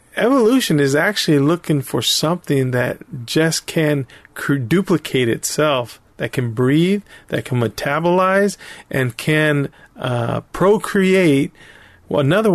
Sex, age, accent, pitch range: male, 40-59, American, 140-180 Hz